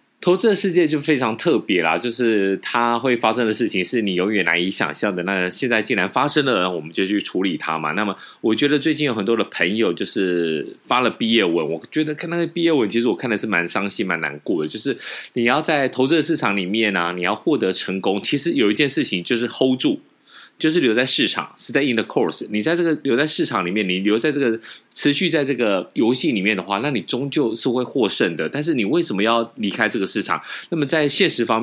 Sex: male